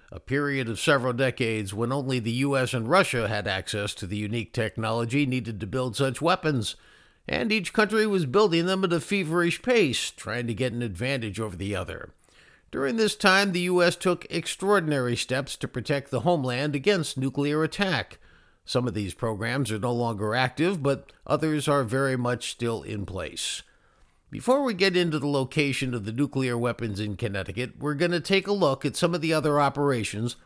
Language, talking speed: English, 185 wpm